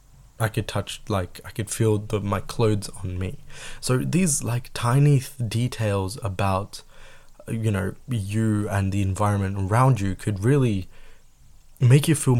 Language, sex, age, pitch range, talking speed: Tamil, male, 20-39, 95-115 Hz, 155 wpm